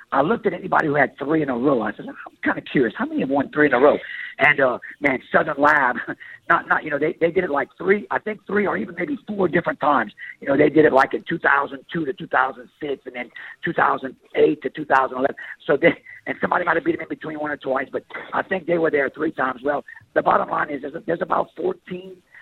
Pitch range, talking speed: 135-175 Hz, 250 wpm